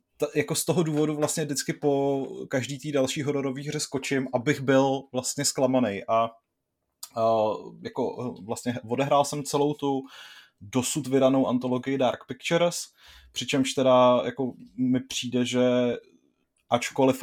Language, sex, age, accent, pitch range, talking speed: Czech, male, 20-39, native, 115-140 Hz, 130 wpm